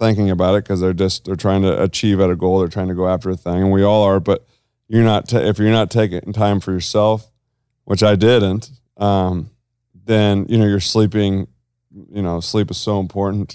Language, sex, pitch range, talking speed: English, male, 90-110 Hz, 220 wpm